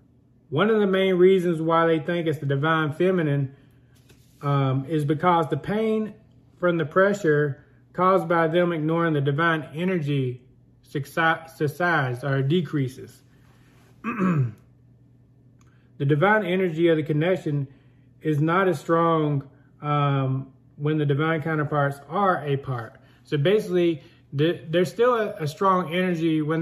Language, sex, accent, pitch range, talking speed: English, male, American, 135-170 Hz, 125 wpm